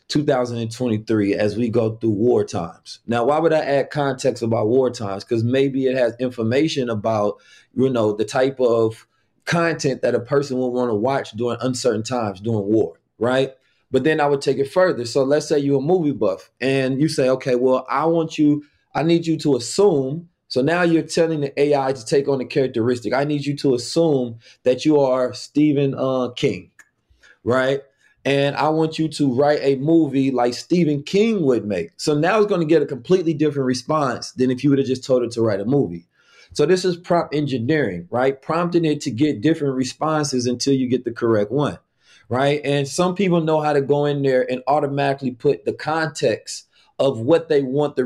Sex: male